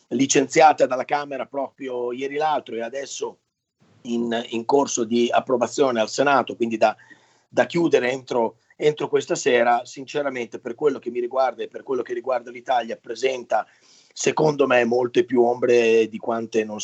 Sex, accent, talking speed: male, native, 155 wpm